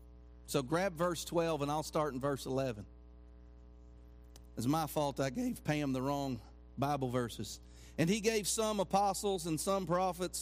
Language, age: English, 40-59